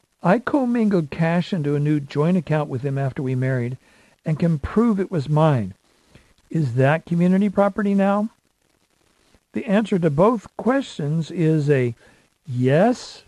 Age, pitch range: 60-79, 140-170 Hz